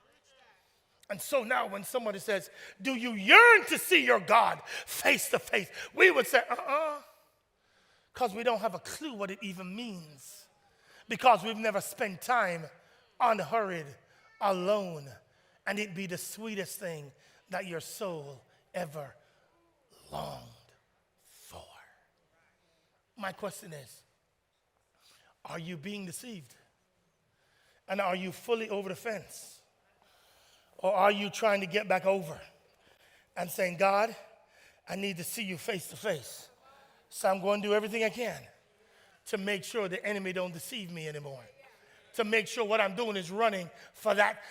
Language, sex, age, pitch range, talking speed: English, male, 30-49, 185-220 Hz, 150 wpm